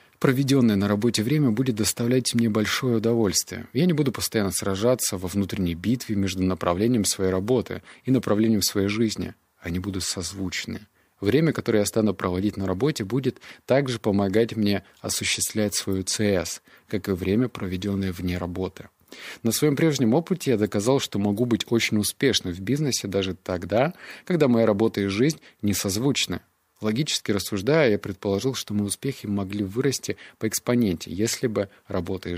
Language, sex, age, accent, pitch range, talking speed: Russian, male, 20-39, native, 95-120 Hz, 160 wpm